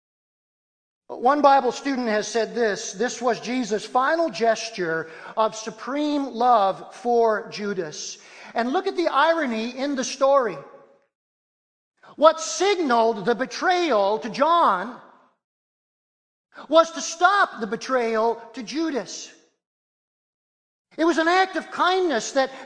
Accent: American